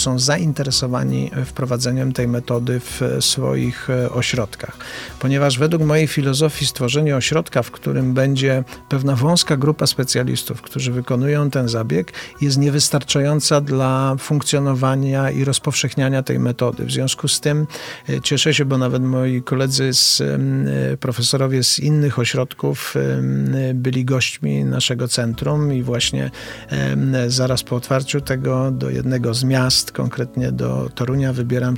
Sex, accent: male, native